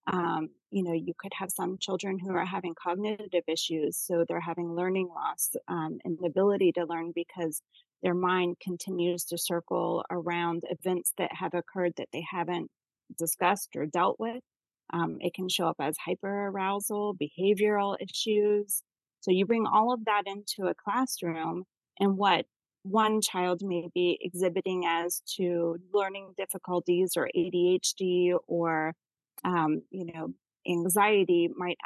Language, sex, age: English, female, 30-49